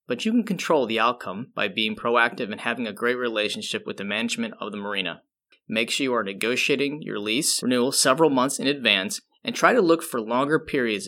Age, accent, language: 20-39, American, English